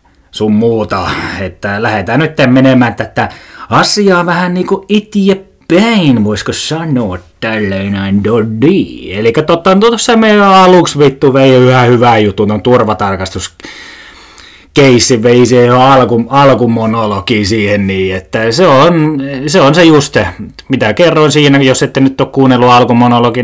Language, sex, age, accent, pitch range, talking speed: Finnish, male, 20-39, native, 110-140 Hz, 135 wpm